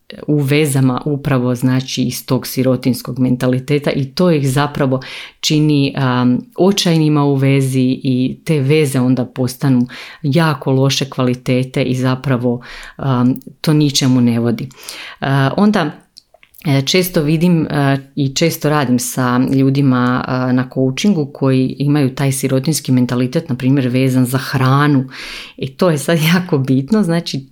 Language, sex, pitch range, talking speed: Croatian, female, 130-150 Hz, 135 wpm